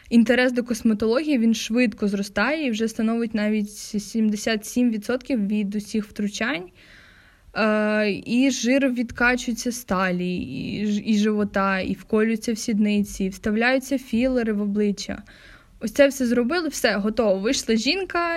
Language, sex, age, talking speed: Ukrainian, female, 20-39, 125 wpm